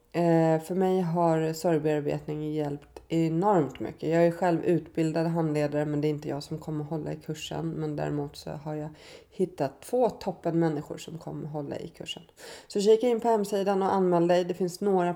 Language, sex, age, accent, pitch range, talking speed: Swedish, female, 20-39, native, 160-180 Hz, 185 wpm